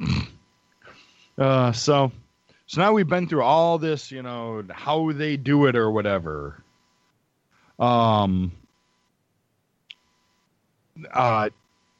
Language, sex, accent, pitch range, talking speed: English, male, American, 110-145 Hz, 95 wpm